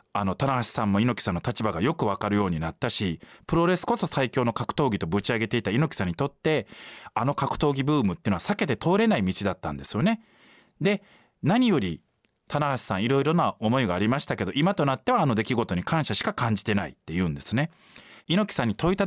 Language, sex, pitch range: Japanese, male, 110-180 Hz